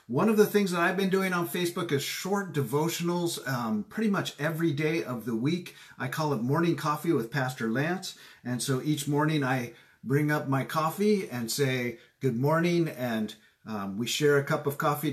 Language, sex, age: English, male, 50-69